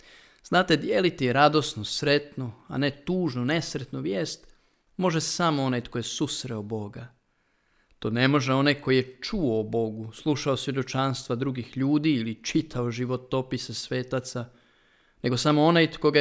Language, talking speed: Croatian, 140 wpm